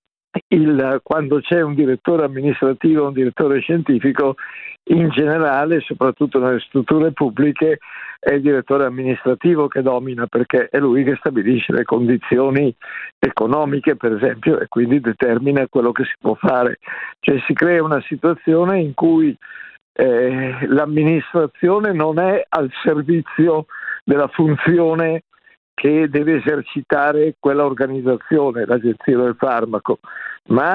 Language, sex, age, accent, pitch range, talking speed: Italian, male, 60-79, native, 130-160 Hz, 125 wpm